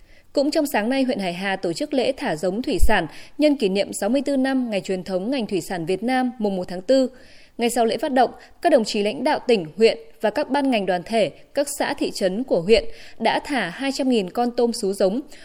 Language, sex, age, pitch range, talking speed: Vietnamese, female, 20-39, 200-270 Hz, 240 wpm